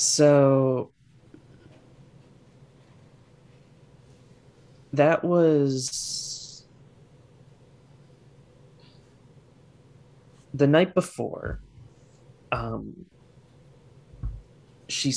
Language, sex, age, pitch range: English, male, 30-49, 125-135 Hz